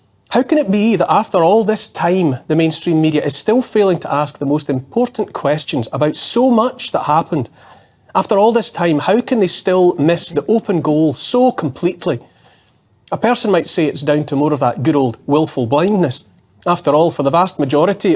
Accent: British